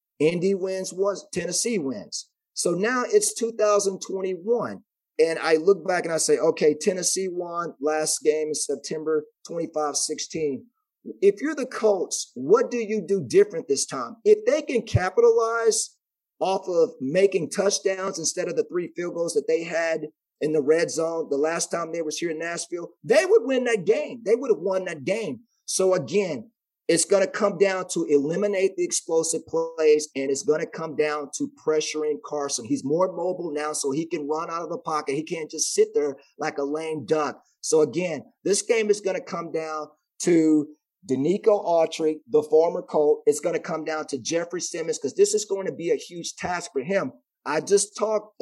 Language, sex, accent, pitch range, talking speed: English, male, American, 160-235 Hz, 190 wpm